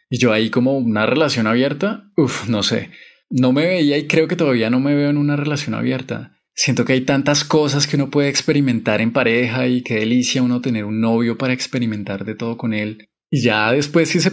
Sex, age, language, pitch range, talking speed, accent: male, 20-39, Spanish, 115-150 Hz, 220 wpm, Colombian